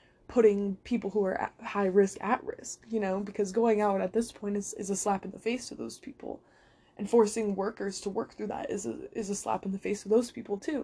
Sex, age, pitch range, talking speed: female, 20-39, 190-215 Hz, 255 wpm